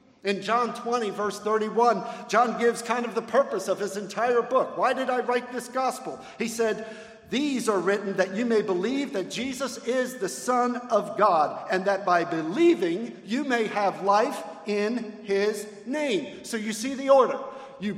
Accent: American